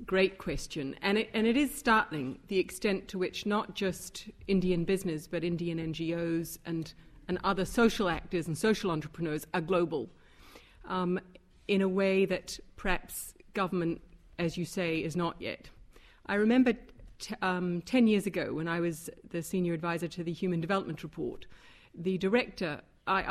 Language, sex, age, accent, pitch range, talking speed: English, female, 40-59, British, 175-240 Hz, 155 wpm